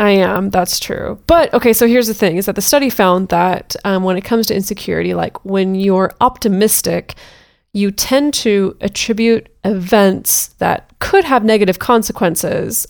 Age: 20-39